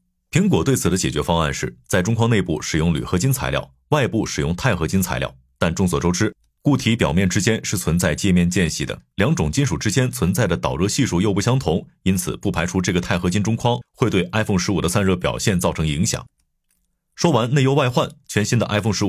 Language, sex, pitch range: Chinese, male, 80-115 Hz